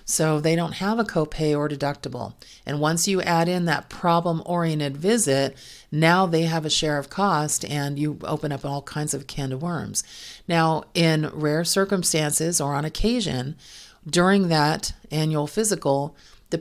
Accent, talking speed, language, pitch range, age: American, 160 wpm, English, 150-180 Hz, 40-59